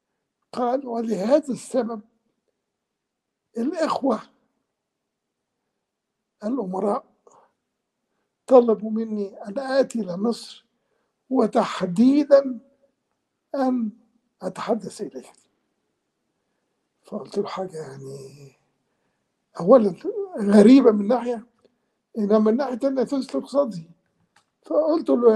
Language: Arabic